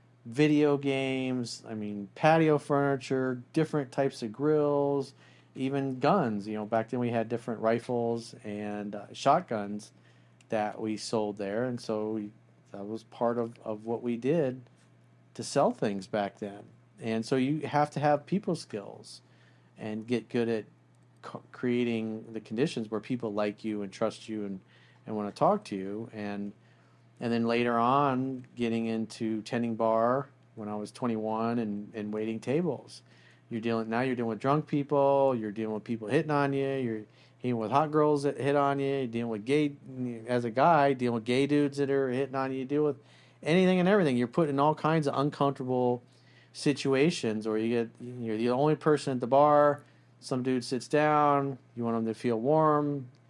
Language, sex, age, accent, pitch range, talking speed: English, male, 40-59, American, 110-140 Hz, 185 wpm